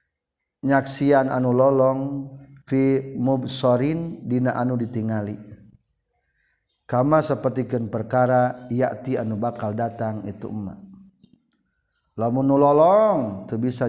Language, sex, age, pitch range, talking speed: Indonesian, male, 40-59, 120-150 Hz, 90 wpm